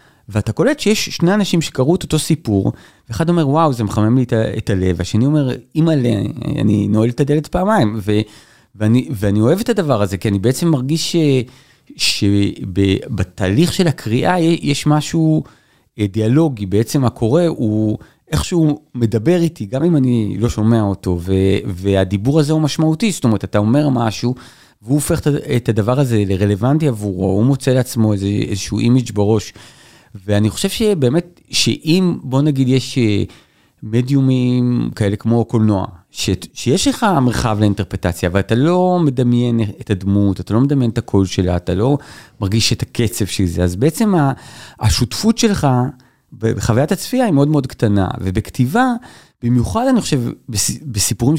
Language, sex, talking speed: Hebrew, male, 150 wpm